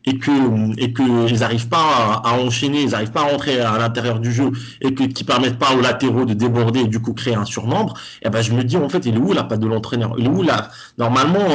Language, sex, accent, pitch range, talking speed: French, male, French, 115-145 Hz, 270 wpm